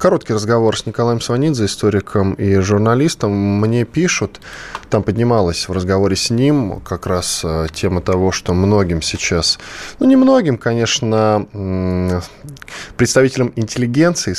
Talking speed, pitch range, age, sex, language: 120 wpm, 95-125 Hz, 10-29, male, Russian